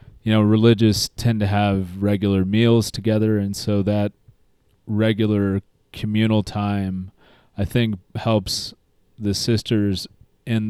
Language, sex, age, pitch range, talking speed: English, male, 30-49, 95-110 Hz, 120 wpm